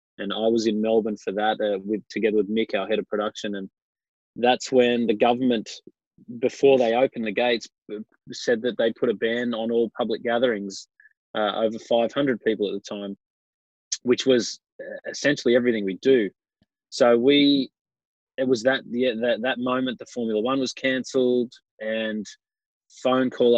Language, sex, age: English, male, 20-39